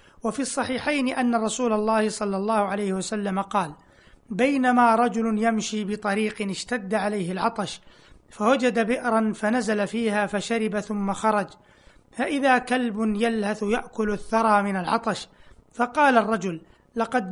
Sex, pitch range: male, 210-235 Hz